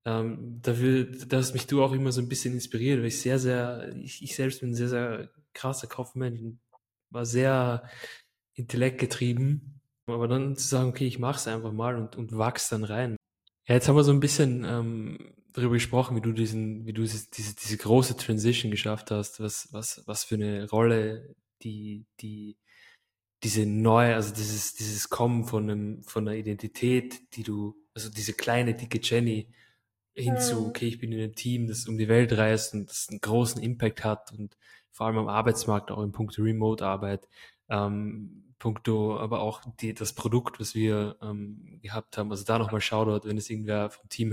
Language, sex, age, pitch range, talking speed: German, male, 20-39, 105-120 Hz, 190 wpm